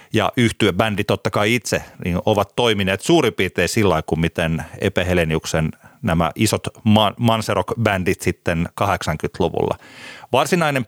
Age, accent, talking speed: 30-49, native, 120 wpm